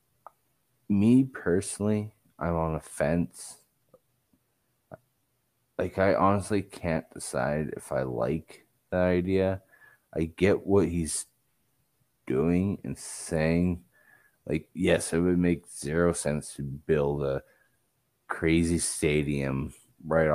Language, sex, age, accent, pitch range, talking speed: English, male, 30-49, American, 75-100 Hz, 105 wpm